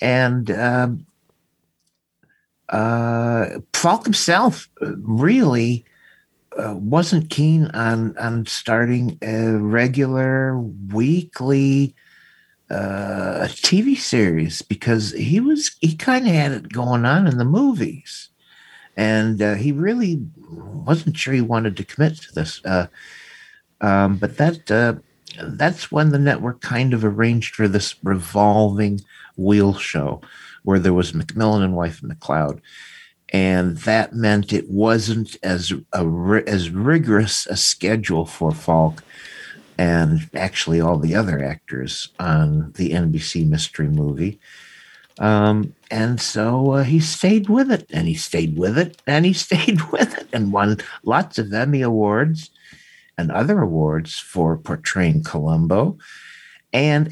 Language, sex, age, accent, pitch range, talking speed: English, male, 50-69, American, 95-150 Hz, 130 wpm